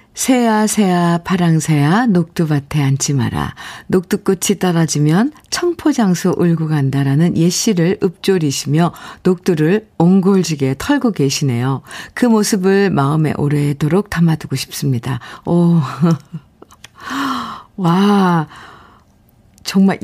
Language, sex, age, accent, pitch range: Korean, female, 50-69, native, 145-205 Hz